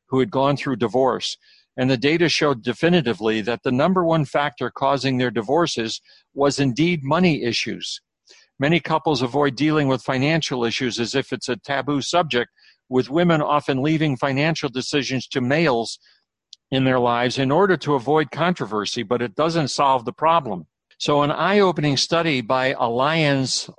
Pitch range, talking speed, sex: 130-155 Hz, 160 wpm, male